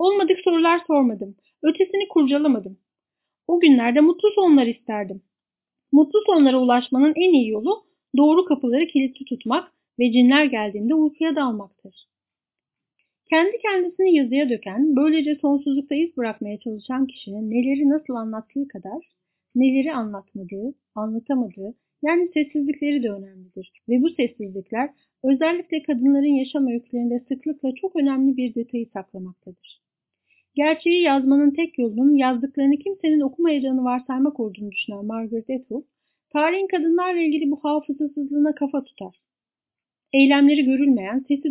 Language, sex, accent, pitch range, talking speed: Turkish, female, native, 240-315 Hz, 115 wpm